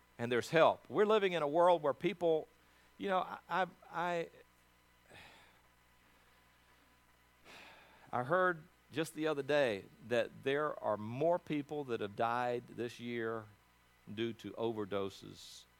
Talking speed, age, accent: 125 wpm, 50-69, American